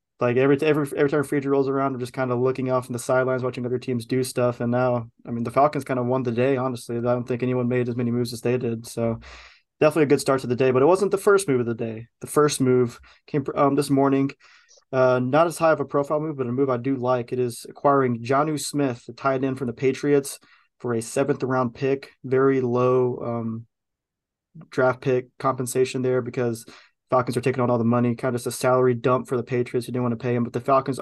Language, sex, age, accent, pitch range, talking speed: English, male, 20-39, American, 120-135 Hz, 255 wpm